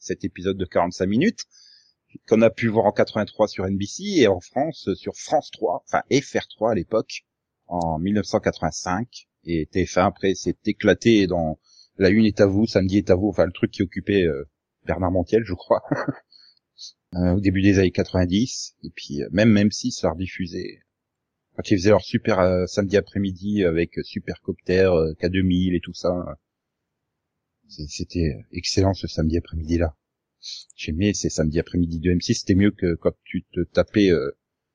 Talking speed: 175 wpm